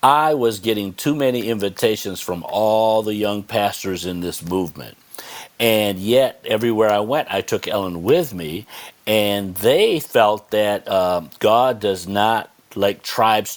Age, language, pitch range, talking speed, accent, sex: 50-69, English, 100-120 Hz, 150 wpm, American, male